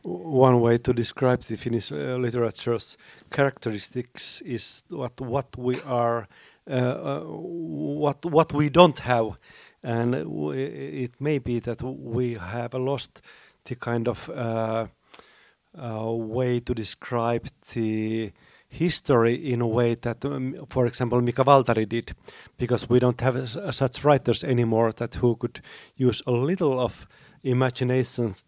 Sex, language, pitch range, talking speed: male, Swedish, 115-135 Hz, 140 wpm